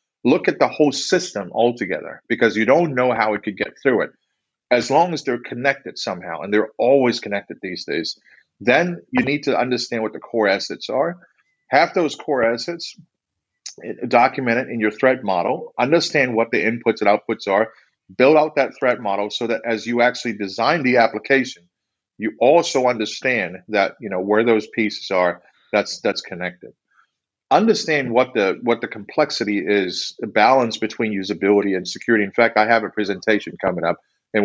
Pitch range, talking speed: 105-125 Hz, 180 wpm